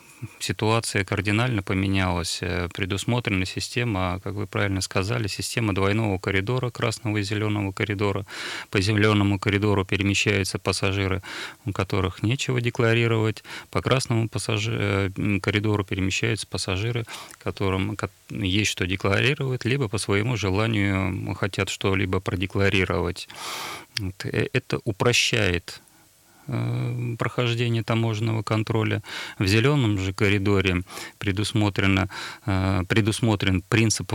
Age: 30-49